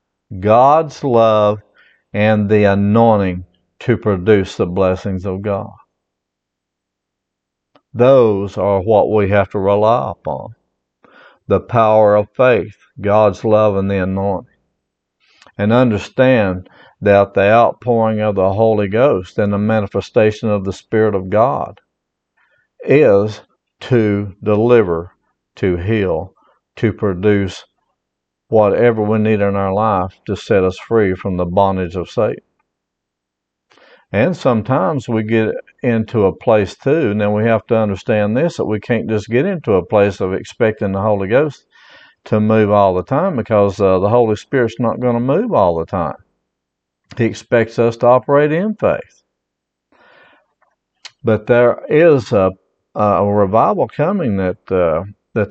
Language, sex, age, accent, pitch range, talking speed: English, male, 50-69, American, 95-110 Hz, 140 wpm